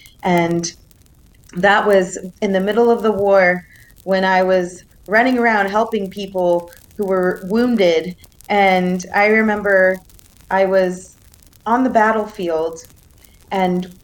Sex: female